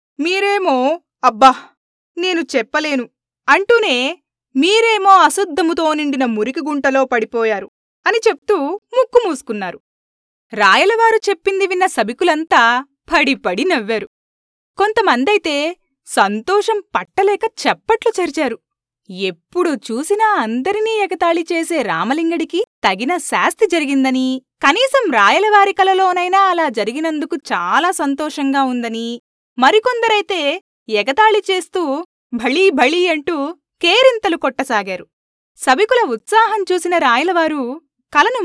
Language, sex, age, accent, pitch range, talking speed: Telugu, female, 20-39, native, 260-375 Hz, 80 wpm